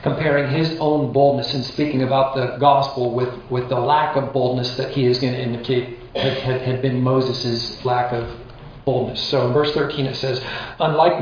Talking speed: 195 wpm